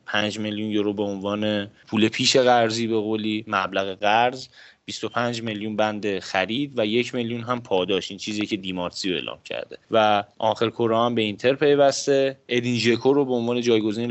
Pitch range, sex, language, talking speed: 105-125 Hz, male, Persian, 165 wpm